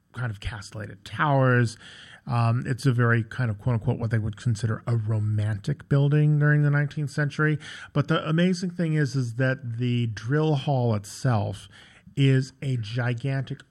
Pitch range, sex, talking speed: 110-135 Hz, male, 160 wpm